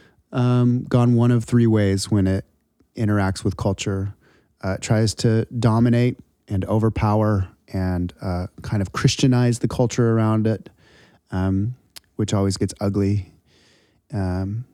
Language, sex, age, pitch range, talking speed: English, male, 30-49, 95-110 Hz, 135 wpm